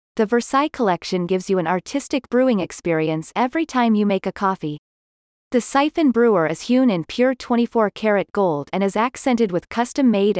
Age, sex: 30-49, female